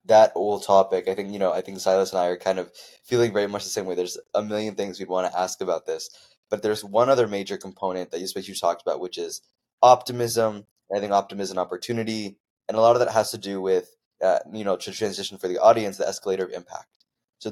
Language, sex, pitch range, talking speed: English, male, 95-115 Hz, 255 wpm